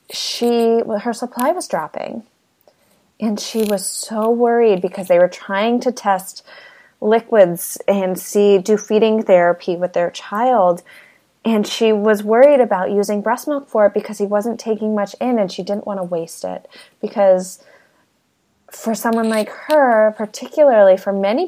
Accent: American